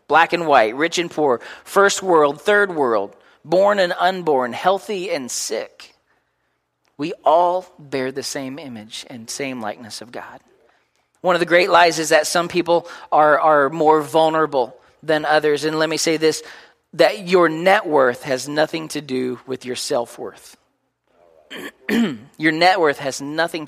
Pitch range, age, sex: 125-165 Hz, 40-59, male